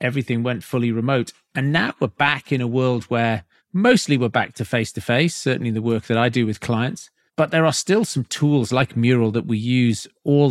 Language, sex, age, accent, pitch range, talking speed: English, male, 40-59, British, 115-145 Hz, 215 wpm